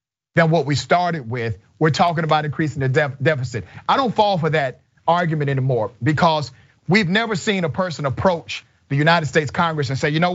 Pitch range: 135-170 Hz